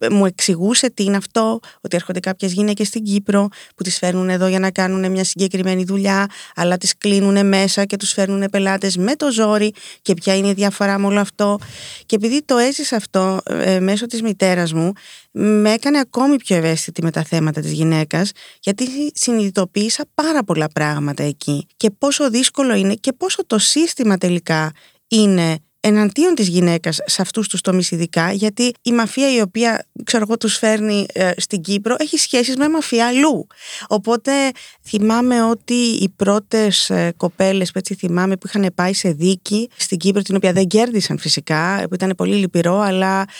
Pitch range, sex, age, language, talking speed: 185-225 Hz, female, 20-39, Greek, 175 wpm